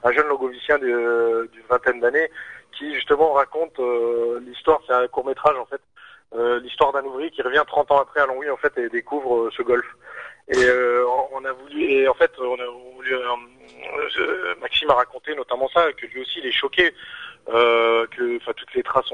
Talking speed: 205 wpm